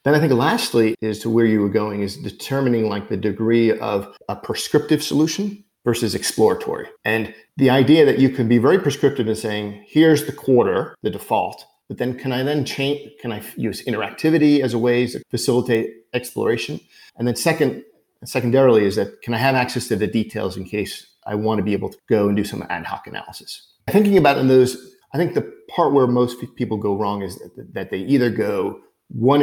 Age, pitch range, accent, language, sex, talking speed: 40-59, 110-135 Hz, American, English, male, 205 wpm